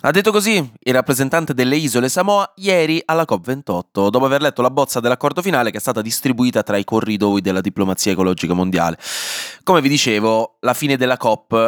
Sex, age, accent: male, 20-39, native